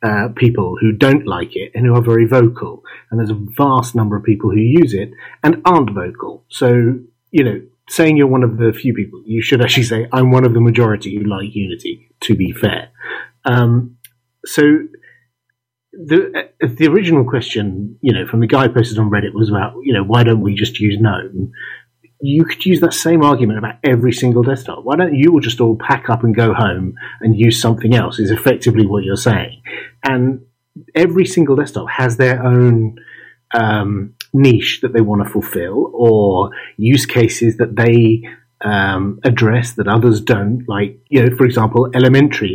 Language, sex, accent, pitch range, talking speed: English, male, British, 110-130 Hz, 190 wpm